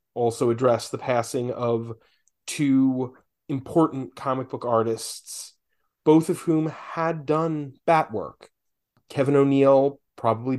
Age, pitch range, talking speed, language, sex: 30-49, 115-140 Hz, 115 wpm, English, male